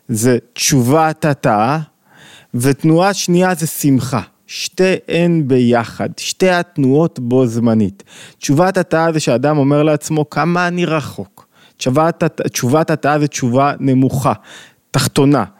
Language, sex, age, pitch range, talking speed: Hebrew, male, 20-39, 130-170 Hz, 110 wpm